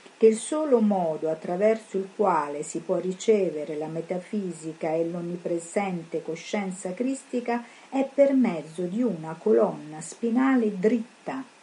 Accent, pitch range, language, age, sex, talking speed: native, 175-225 Hz, Italian, 50-69, female, 125 wpm